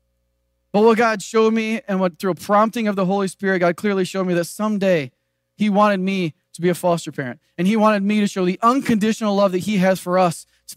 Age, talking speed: 30-49, 240 wpm